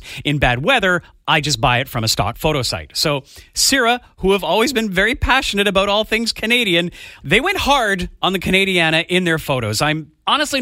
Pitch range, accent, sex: 145-205 Hz, American, male